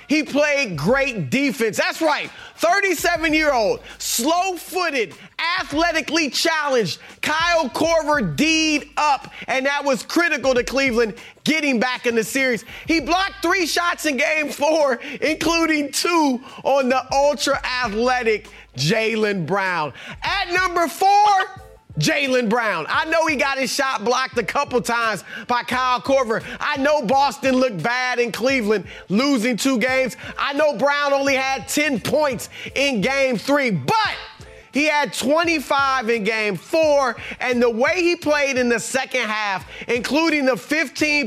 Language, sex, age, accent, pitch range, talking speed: English, male, 30-49, American, 240-300 Hz, 140 wpm